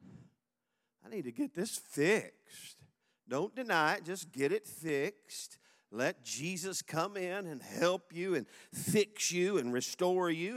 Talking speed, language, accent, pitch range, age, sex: 150 wpm, English, American, 115-180 Hz, 50-69, male